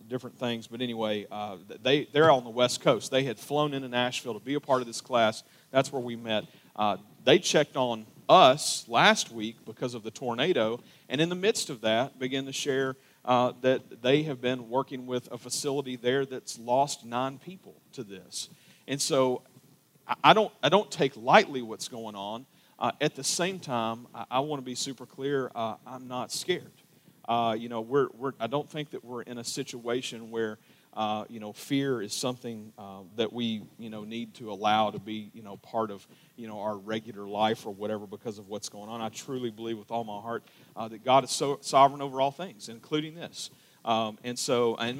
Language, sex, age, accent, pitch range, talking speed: English, male, 40-59, American, 115-140 Hz, 210 wpm